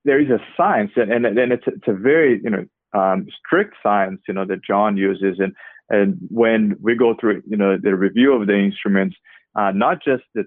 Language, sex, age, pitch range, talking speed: English, male, 30-49, 100-110 Hz, 225 wpm